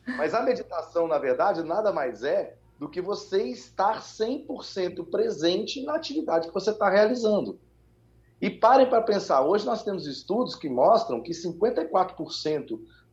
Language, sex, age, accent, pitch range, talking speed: Portuguese, male, 30-49, Brazilian, 115-175 Hz, 145 wpm